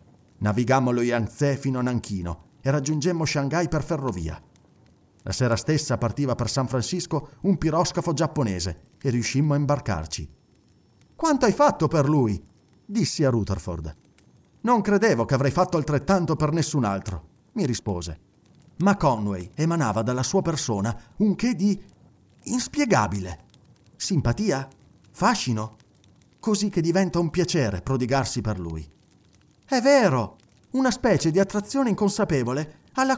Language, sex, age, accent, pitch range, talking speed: Italian, male, 40-59, native, 115-195 Hz, 130 wpm